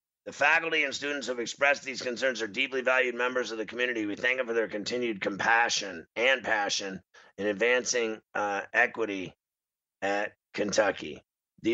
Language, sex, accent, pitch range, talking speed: English, male, American, 110-125 Hz, 160 wpm